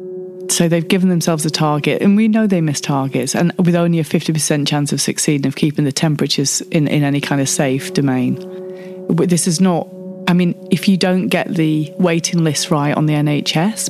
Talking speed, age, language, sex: 205 wpm, 30-49, English, female